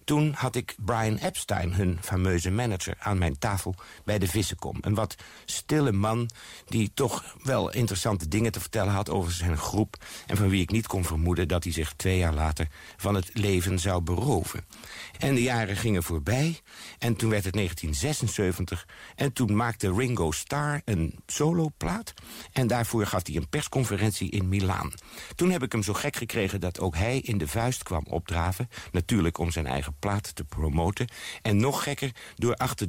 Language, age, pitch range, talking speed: Dutch, 50-69, 90-115 Hz, 180 wpm